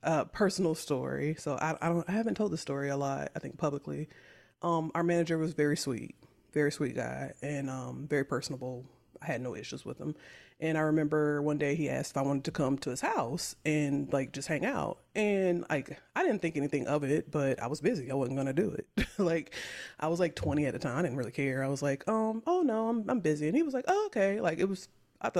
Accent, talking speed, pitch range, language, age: American, 250 wpm, 135-175 Hz, English, 30-49